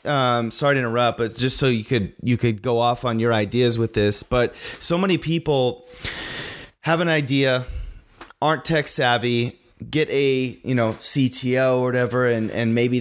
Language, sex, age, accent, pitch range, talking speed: English, male, 30-49, American, 120-145 Hz, 175 wpm